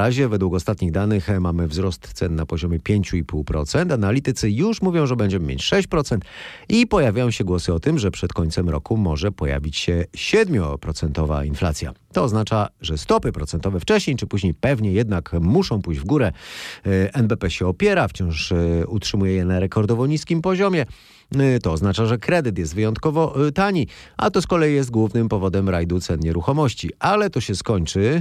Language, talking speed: Polish, 165 wpm